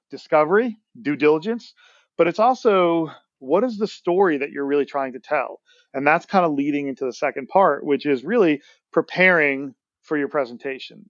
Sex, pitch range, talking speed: male, 140-175 Hz, 175 wpm